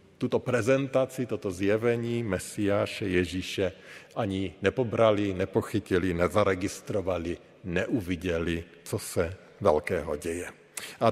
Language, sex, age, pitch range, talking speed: Slovak, male, 50-69, 95-125 Hz, 85 wpm